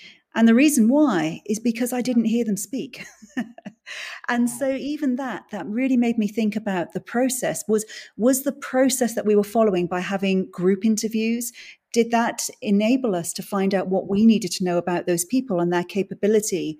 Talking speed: 190 wpm